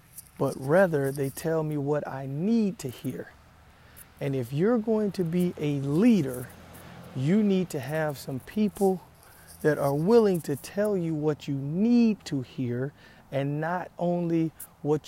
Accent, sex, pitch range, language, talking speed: American, male, 115-185 Hz, English, 155 wpm